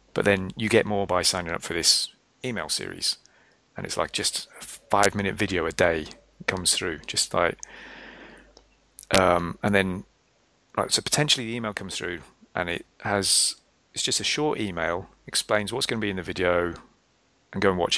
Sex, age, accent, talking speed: male, 30-49, British, 185 wpm